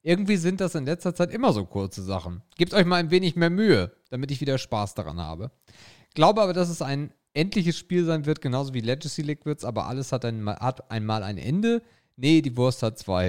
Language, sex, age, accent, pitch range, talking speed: German, male, 40-59, German, 110-160 Hz, 220 wpm